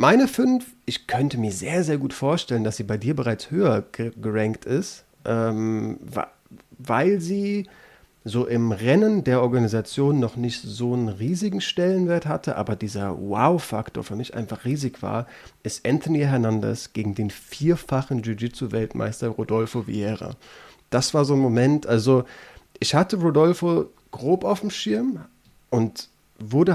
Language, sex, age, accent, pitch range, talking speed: German, male, 30-49, German, 115-145 Hz, 145 wpm